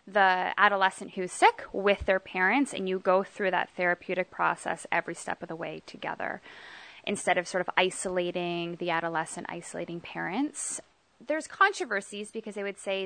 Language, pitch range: English, 175-210 Hz